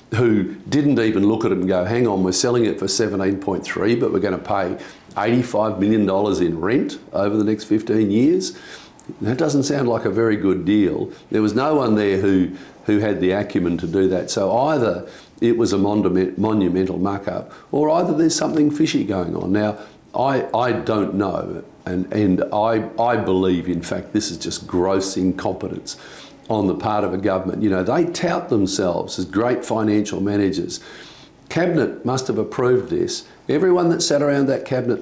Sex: male